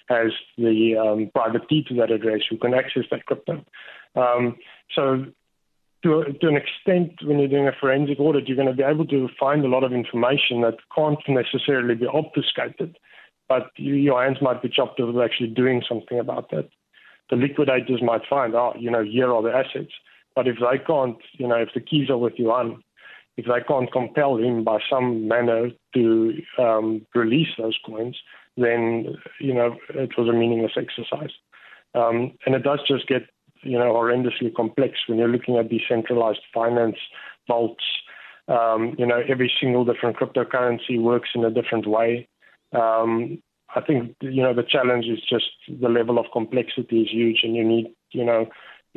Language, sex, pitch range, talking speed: English, male, 115-130 Hz, 180 wpm